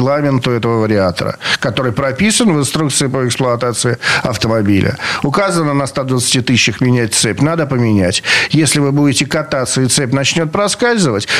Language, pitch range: Russian, 125-155 Hz